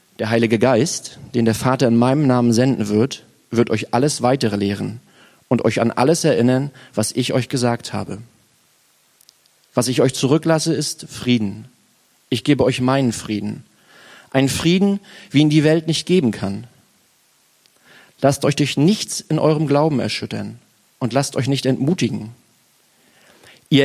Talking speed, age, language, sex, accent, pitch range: 150 wpm, 40-59, German, male, German, 115-150 Hz